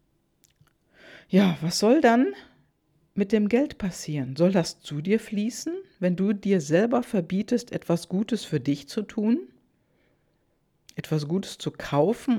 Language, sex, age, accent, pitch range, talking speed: German, female, 50-69, German, 155-220 Hz, 135 wpm